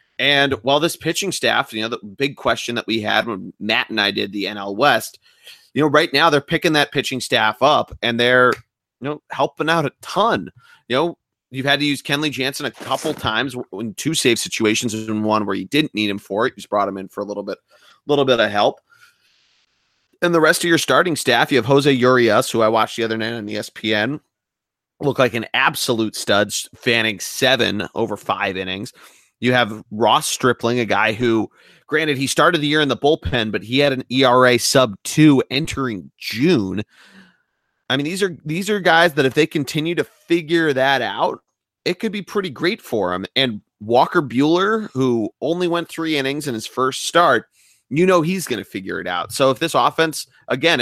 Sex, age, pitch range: male, 30-49, 115-155 Hz